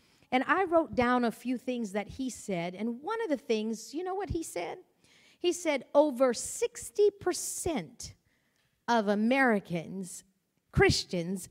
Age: 50-69